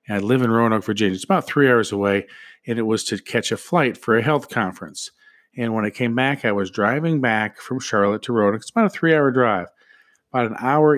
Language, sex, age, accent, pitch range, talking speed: English, male, 40-59, American, 110-140 Hz, 230 wpm